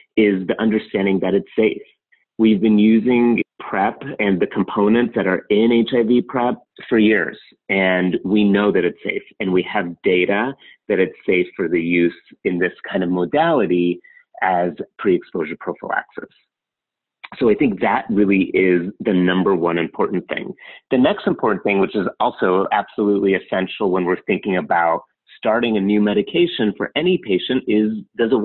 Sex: male